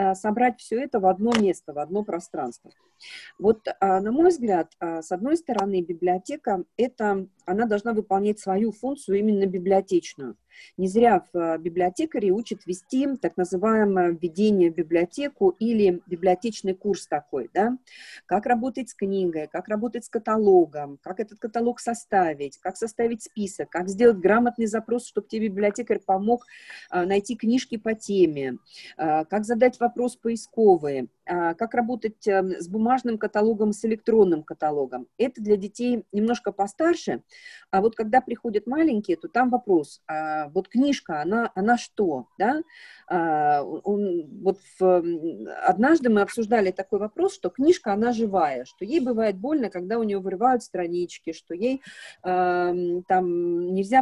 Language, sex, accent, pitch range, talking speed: Russian, female, native, 180-240 Hz, 140 wpm